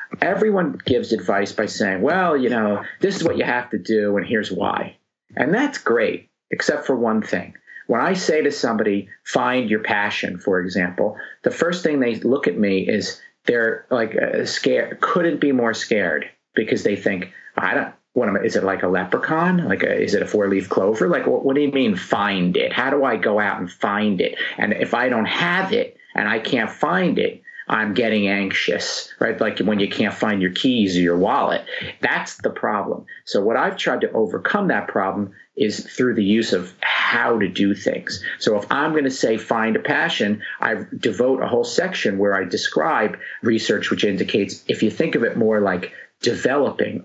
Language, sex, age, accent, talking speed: English, male, 50-69, American, 205 wpm